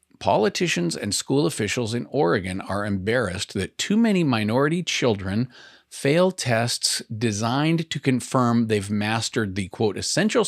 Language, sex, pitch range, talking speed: English, male, 105-150 Hz, 130 wpm